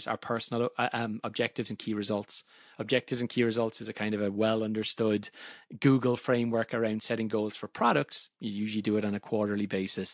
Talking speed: 190 wpm